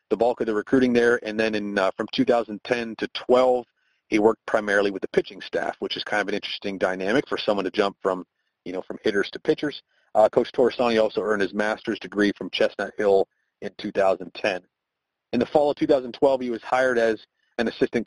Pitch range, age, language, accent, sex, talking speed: 110-135 Hz, 40-59, English, American, male, 210 wpm